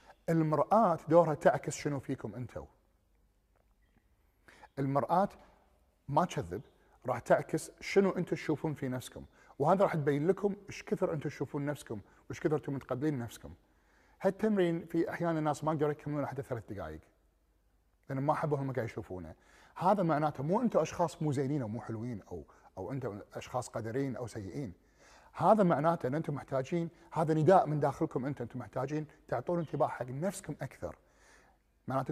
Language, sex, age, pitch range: Arabic, male, 40-59, 120-165 Hz